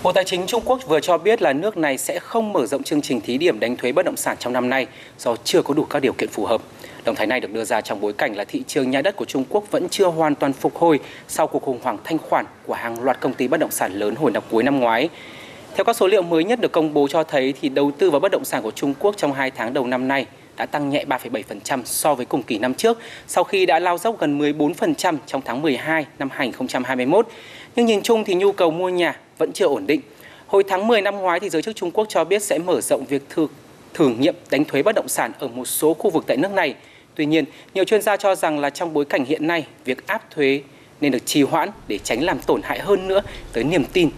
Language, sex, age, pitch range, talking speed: Vietnamese, male, 20-39, 140-195 Hz, 275 wpm